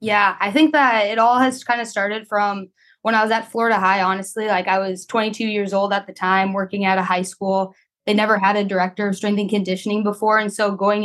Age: 20-39